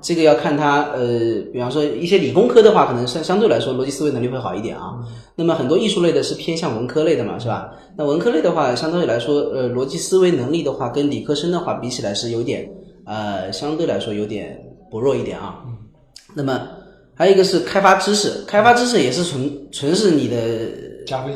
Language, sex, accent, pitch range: Chinese, male, native, 125-175 Hz